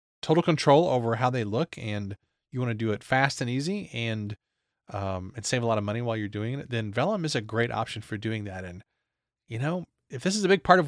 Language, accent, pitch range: English, American, 115-150 Hz